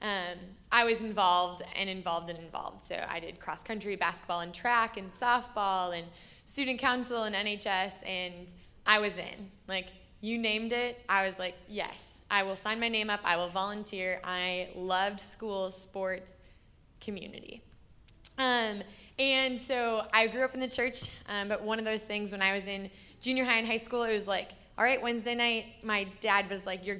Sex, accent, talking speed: female, American, 185 wpm